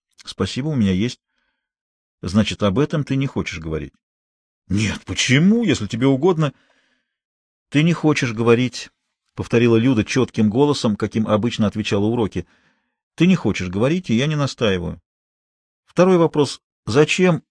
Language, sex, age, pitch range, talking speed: Russian, male, 40-59, 105-165 Hz, 135 wpm